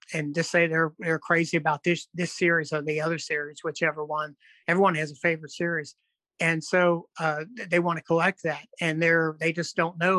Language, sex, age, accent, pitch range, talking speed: English, male, 60-79, American, 160-180 Hz, 210 wpm